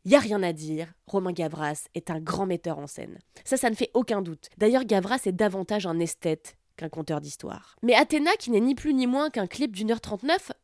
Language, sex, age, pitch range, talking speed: French, female, 20-39, 175-260 Hz, 230 wpm